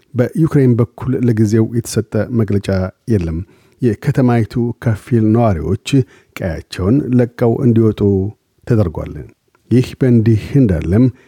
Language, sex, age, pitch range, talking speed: Amharic, male, 50-69, 115-125 Hz, 85 wpm